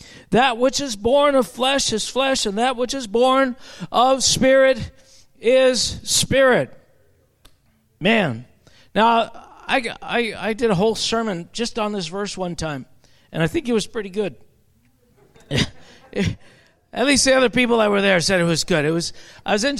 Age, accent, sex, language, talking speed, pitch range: 50-69, American, male, English, 170 wpm, 205-255 Hz